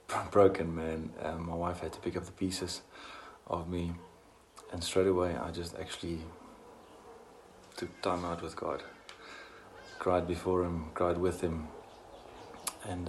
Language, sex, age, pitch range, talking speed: English, male, 30-49, 85-95 Hz, 140 wpm